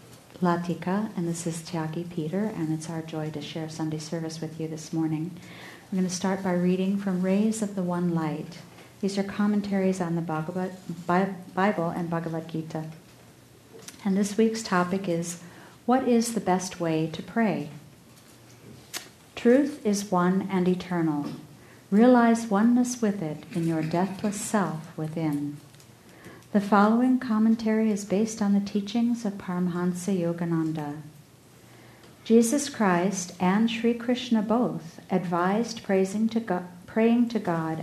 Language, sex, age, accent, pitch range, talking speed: English, female, 50-69, American, 165-215 Hz, 135 wpm